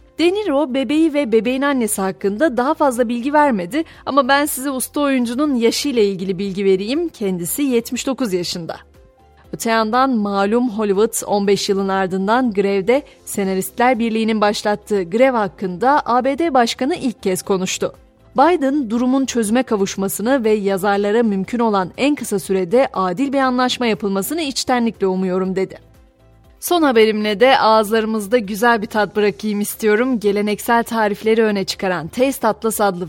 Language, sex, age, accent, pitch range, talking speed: Turkish, female, 30-49, native, 195-255 Hz, 135 wpm